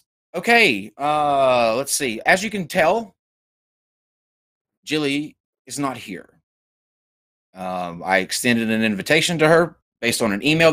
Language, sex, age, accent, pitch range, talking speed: English, male, 30-49, American, 95-135 Hz, 130 wpm